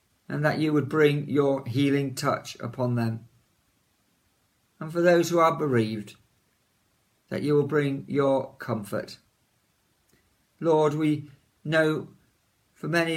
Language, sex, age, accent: English, male, 50-69, British